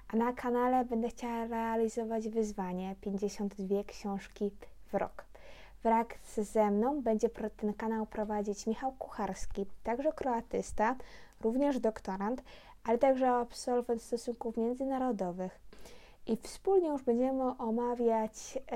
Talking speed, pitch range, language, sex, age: 110 wpm, 205-240 Hz, Polish, female, 20-39